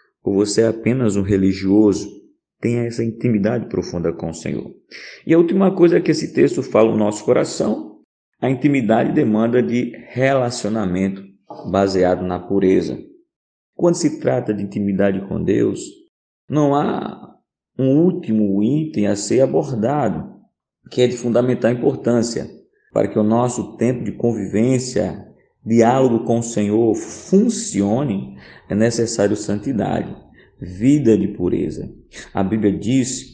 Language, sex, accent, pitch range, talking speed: Portuguese, male, Brazilian, 100-130 Hz, 130 wpm